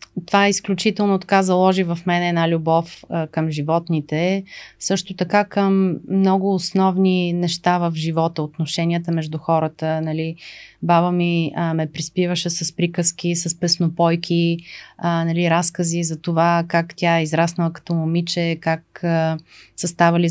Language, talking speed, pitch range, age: Bulgarian, 135 wpm, 160-185 Hz, 30-49